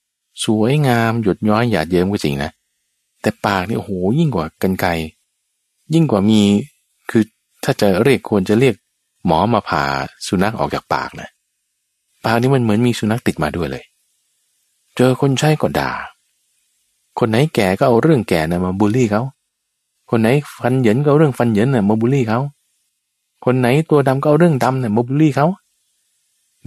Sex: male